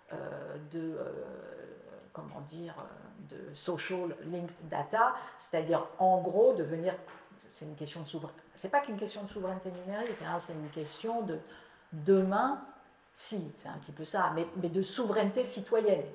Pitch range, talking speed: 165-220 Hz, 160 wpm